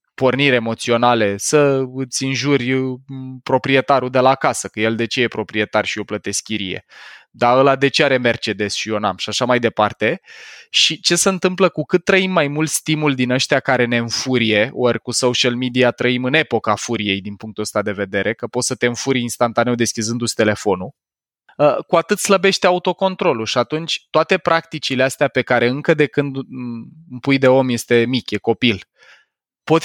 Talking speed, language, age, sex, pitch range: 185 wpm, Romanian, 20-39, male, 120-175 Hz